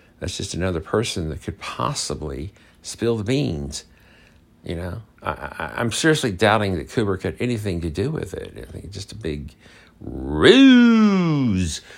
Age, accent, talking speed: 50-69, American, 150 wpm